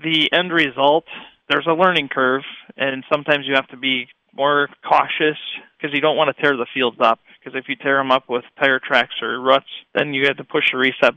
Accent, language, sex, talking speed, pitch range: American, English, male, 225 wpm, 125-145 Hz